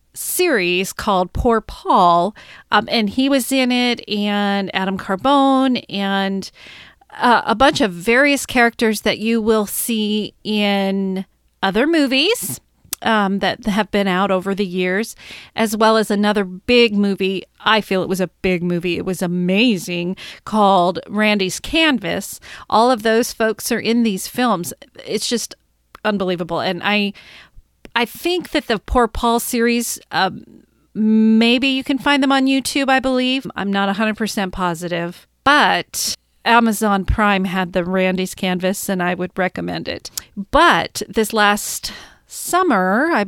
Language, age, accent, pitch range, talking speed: English, 40-59, American, 190-235 Hz, 145 wpm